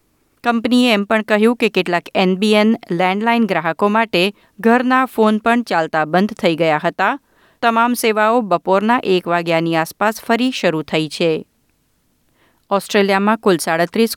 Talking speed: 130 wpm